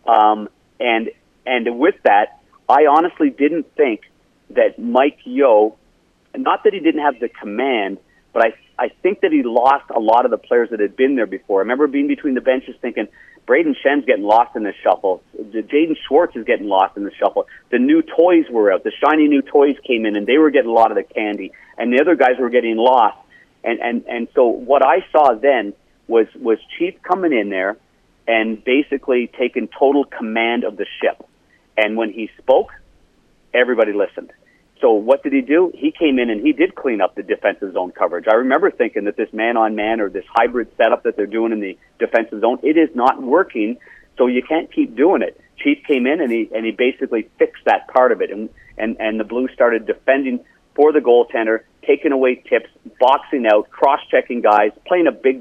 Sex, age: male, 50-69